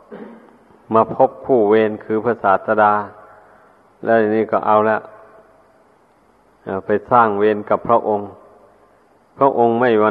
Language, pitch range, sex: Thai, 110-120 Hz, male